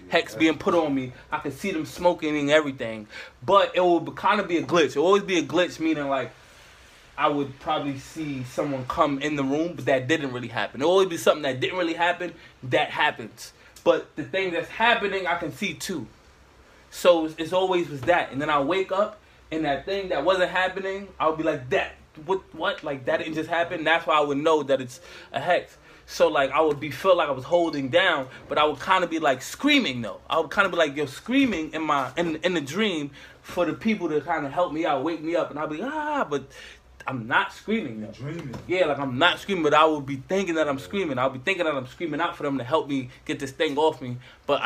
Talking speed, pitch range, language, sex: 250 wpm, 140-180 Hz, English, male